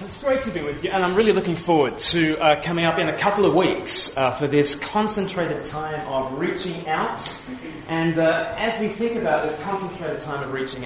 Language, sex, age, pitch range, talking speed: English, male, 30-49, 135-165 Hz, 215 wpm